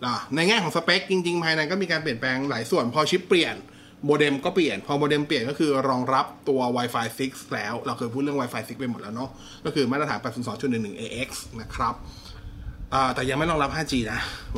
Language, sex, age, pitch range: Thai, male, 20-39, 120-155 Hz